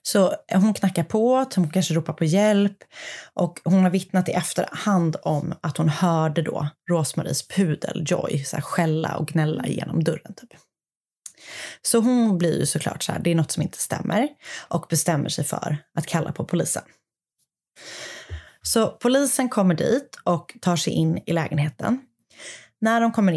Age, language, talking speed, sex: 30-49, Swedish, 160 wpm, female